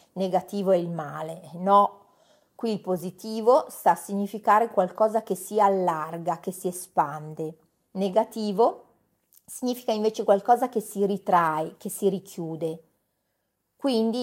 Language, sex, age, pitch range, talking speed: Italian, female, 40-59, 180-225 Hz, 120 wpm